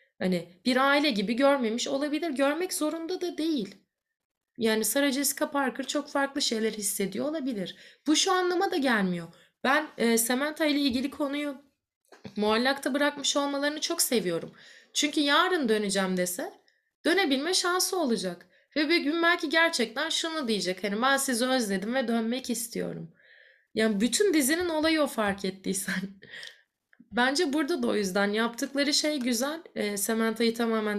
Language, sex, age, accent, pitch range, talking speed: Turkish, female, 30-49, native, 215-290 Hz, 145 wpm